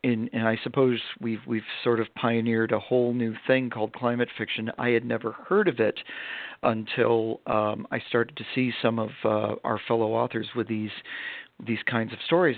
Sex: male